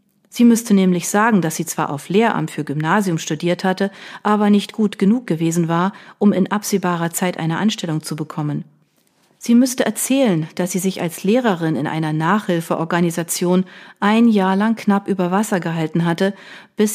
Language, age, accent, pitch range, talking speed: German, 40-59, German, 165-200 Hz, 165 wpm